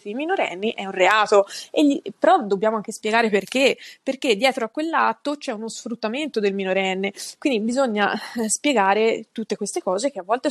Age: 20-39